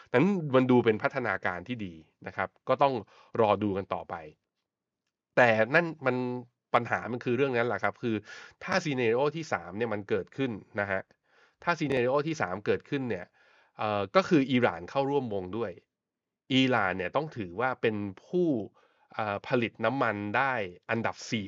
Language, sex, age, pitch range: Thai, male, 20-39, 100-125 Hz